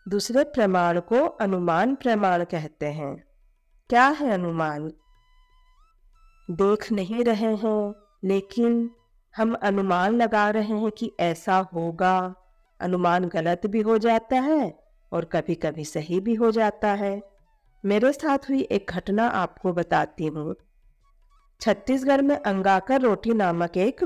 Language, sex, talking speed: Hindi, female, 125 wpm